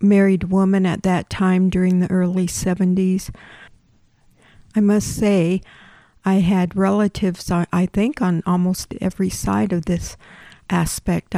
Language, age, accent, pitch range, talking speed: English, 50-69, American, 180-200 Hz, 125 wpm